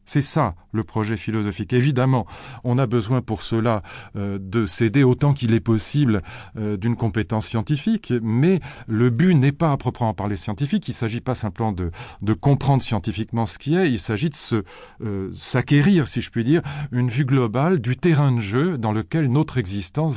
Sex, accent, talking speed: male, French, 185 wpm